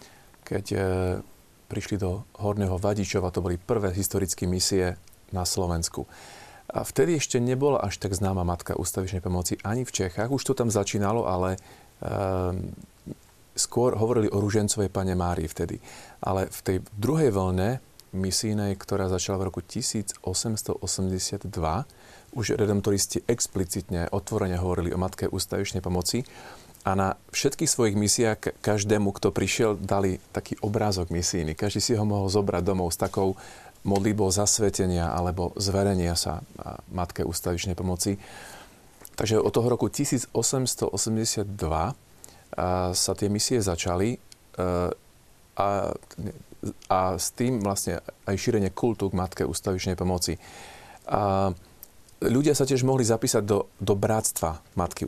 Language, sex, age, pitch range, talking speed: Slovak, male, 40-59, 90-105 Hz, 130 wpm